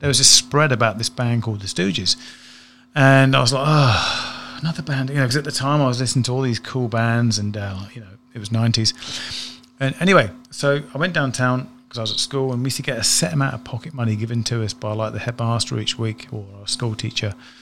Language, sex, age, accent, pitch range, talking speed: English, male, 30-49, British, 115-135 Hz, 250 wpm